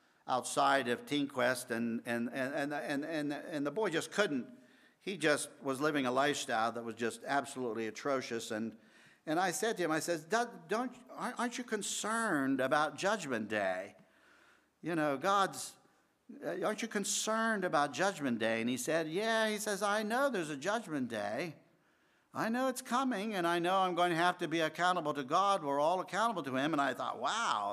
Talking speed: 185 wpm